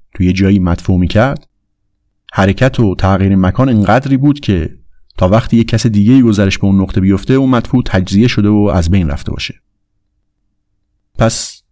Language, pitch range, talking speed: Persian, 95-120 Hz, 165 wpm